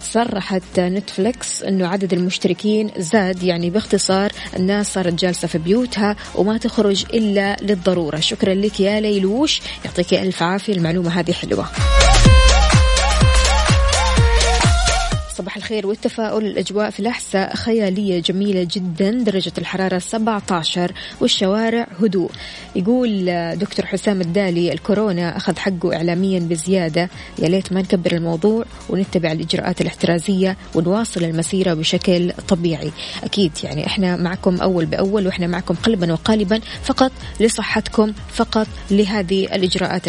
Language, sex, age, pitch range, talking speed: Arabic, female, 20-39, 180-215 Hz, 115 wpm